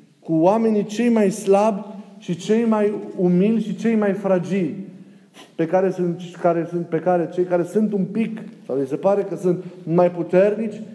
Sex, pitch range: male, 165-210 Hz